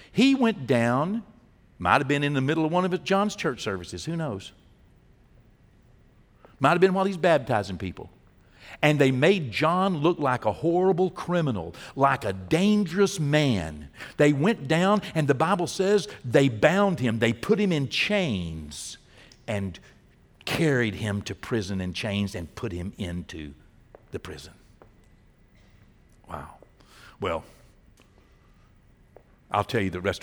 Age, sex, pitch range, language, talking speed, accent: 60-79, male, 95-150 Hz, English, 145 wpm, American